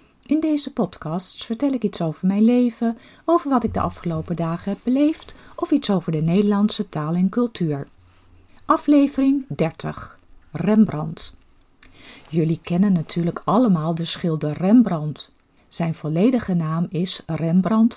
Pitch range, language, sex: 160-220 Hz, Dutch, female